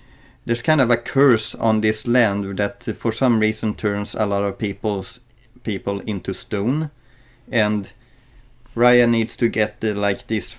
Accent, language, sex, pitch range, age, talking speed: Swedish, English, male, 105-120 Hz, 30-49, 160 wpm